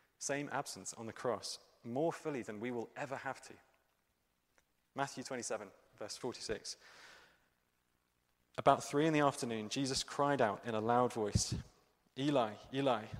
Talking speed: 140 wpm